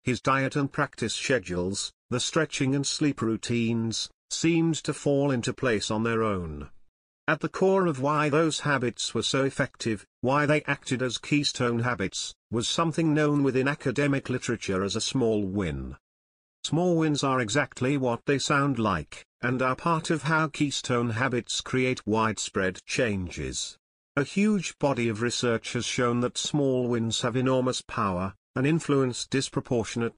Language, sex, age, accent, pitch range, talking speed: English, male, 50-69, British, 110-140 Hz, 155 wpm